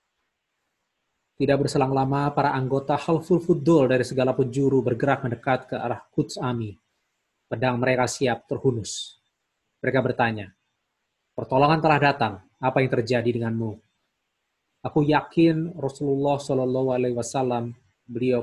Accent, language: native, Indonesian